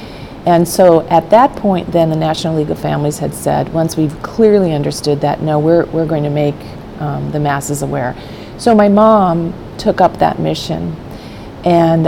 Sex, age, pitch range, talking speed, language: female, 40-59, 145-170 Hz, 180 wpm, English